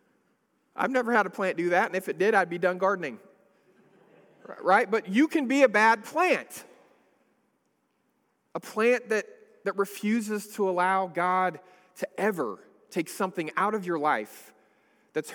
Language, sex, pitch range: English, male, 195-270 Hz